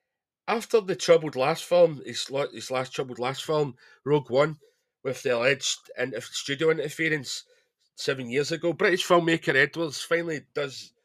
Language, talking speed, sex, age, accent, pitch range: English, 140 wpm, male, 40-59, British, 130-195 Hz